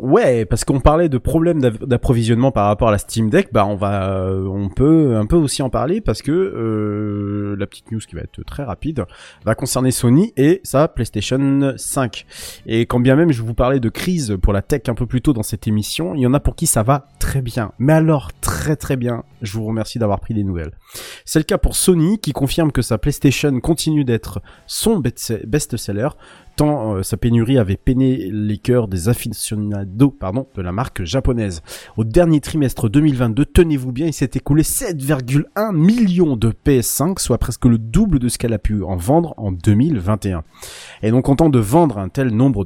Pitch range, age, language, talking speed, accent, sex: 105-140 Hz, 30-49, French, 205 wpm, French, male